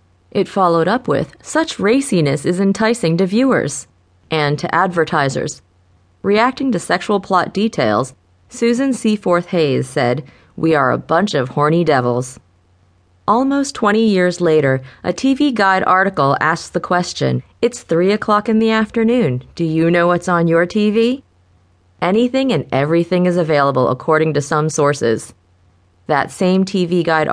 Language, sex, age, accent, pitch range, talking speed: English, female, 30-49, American, 145-200 Hz, 145 wpm